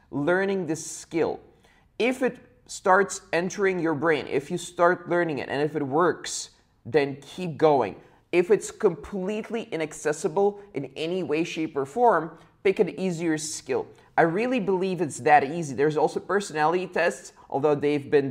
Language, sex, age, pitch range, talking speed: English, male, 20-39, 140-180 Hz, 155 wpm